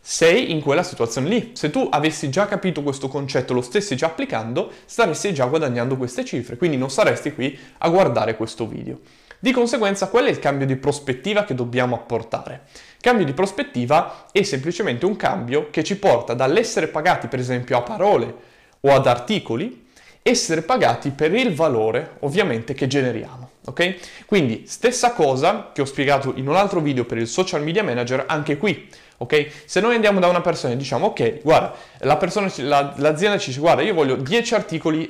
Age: 20-39